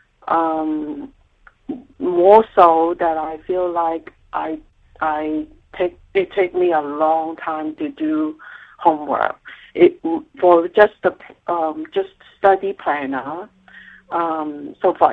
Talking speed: 120 wpm